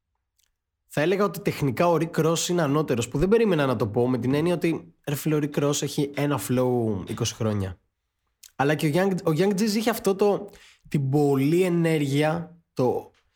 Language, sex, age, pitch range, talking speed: Greek, male, 20-39, 110-160 Hz, 185 wpm